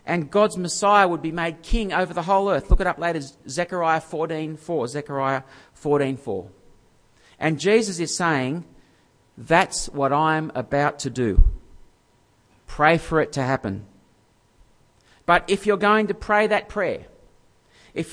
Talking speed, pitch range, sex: 140 wpm, 135-195 Hz, male